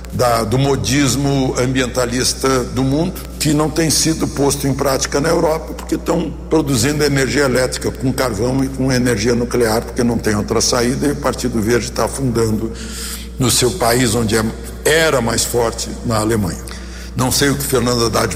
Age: 60-79